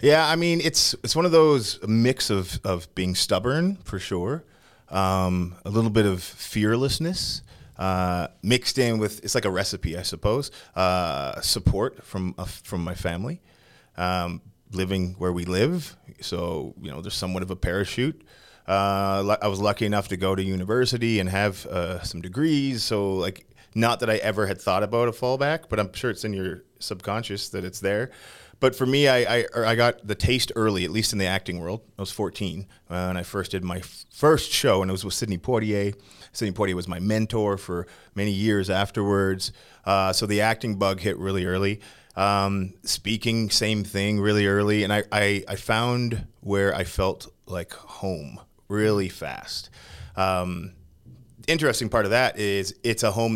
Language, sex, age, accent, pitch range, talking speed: English, male, 30-49, American, 95-115 Hz, 185 wpm